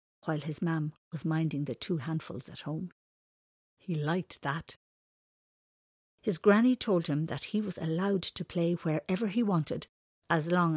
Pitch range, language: 150-190 Hz, English